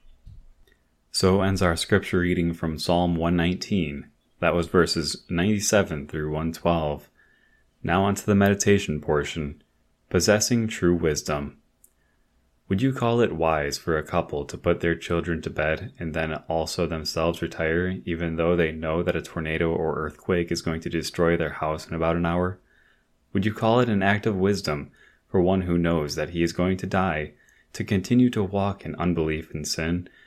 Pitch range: 80-95 Hz